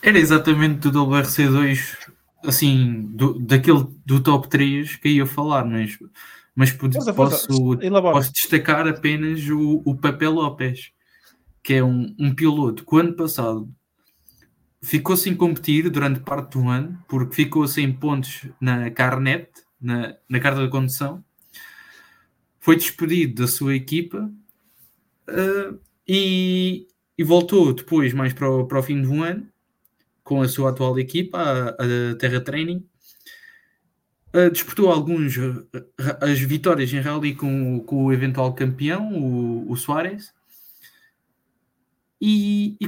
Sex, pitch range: male, 130-175 Hz